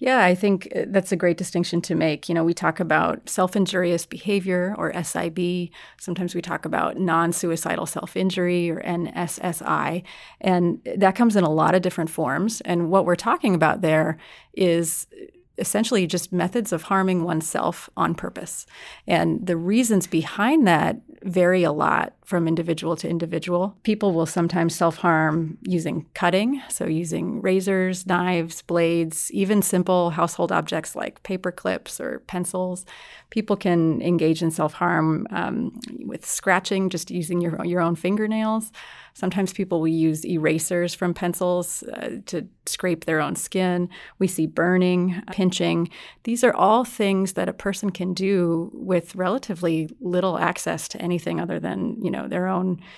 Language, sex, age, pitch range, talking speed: English, female, 30-49, 170-190 Hz, 150 wpm